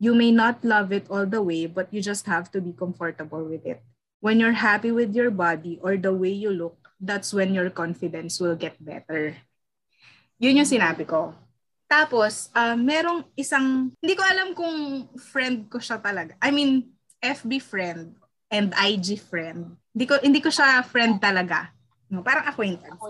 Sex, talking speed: female, 175 wpm